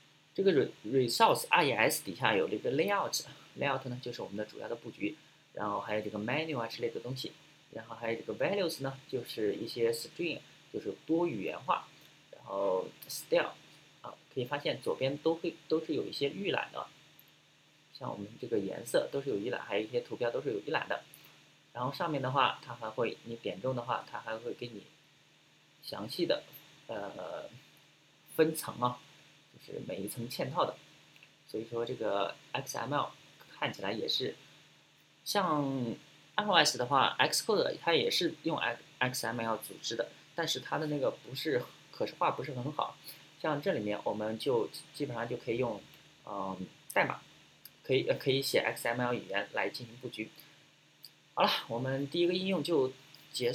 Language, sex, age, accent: Chinese, male, 20-39, native